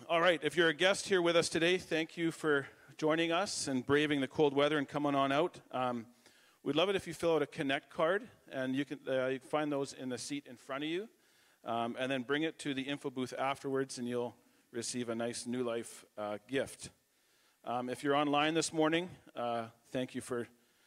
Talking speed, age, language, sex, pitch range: 225 wpm, 40-59, English, male, 125-150 Hz